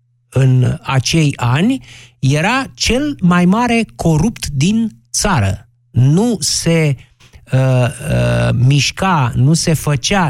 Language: Romanian